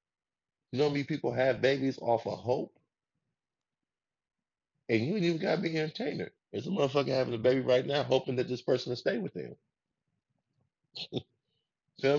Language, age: English, 20-39